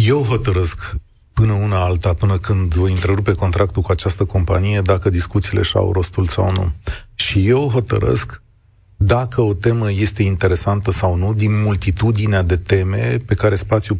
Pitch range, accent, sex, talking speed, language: 95-110 Hz, native, male, 155 wpm, Romanian